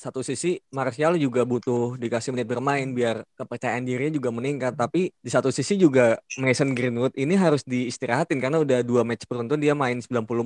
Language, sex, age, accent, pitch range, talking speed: Indonesian, male, 20-39, native, 115-140 Hz, 180 wpm